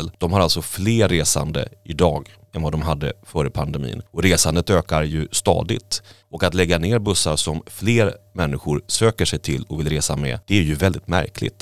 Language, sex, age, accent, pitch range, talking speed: Swedish, male, 30-49, native, 80-105 Hz, 190 wpm